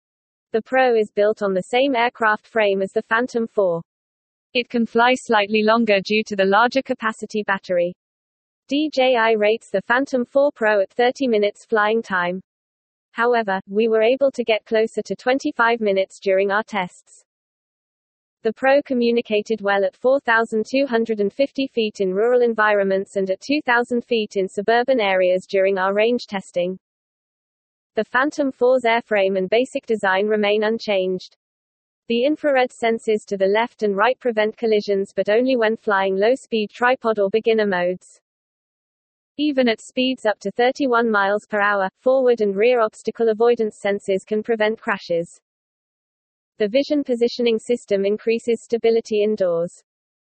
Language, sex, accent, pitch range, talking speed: English, female, British, 200-240 Hz, 145 wpm